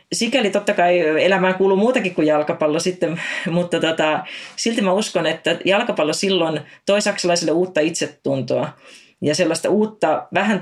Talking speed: 135 wpm